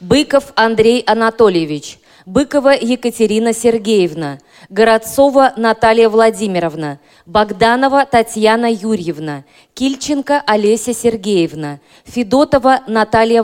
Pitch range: 180-235 Hz